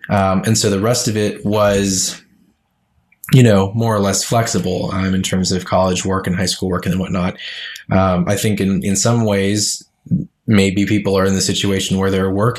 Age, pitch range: 20-39, 95-105 Hz